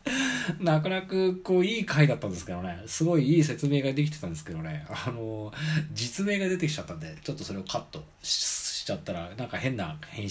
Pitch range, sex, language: 95-150 Hz, male, Japanese